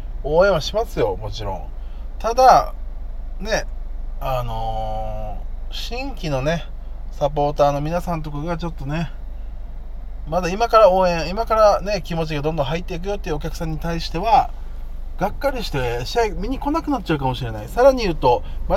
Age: 20-39